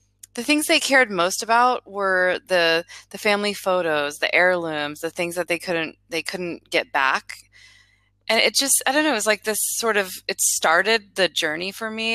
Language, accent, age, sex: English, American, 20-39, female